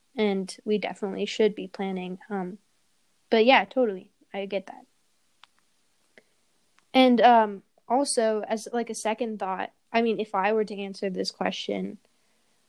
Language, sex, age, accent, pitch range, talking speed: English, female, 10-29, American, 200-245 Hz, 140 wpm